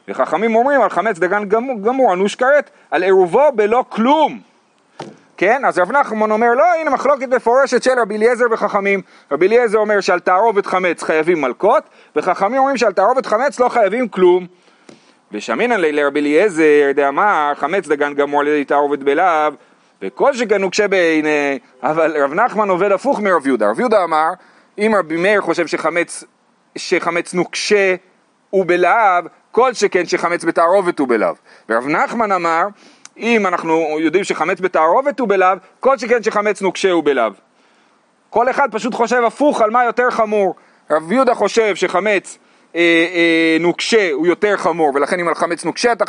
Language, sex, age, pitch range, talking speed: Hebrew, male, 40-59, 170-235 Hz, 145 wpm